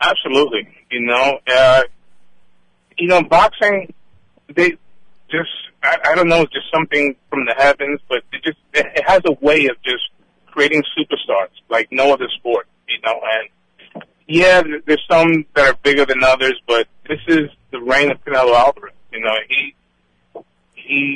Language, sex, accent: English, male, American